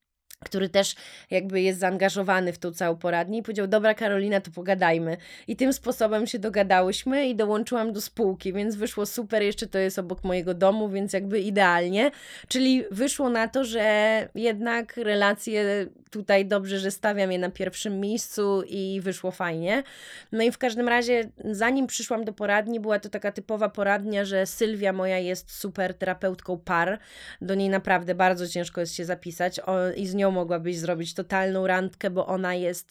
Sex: female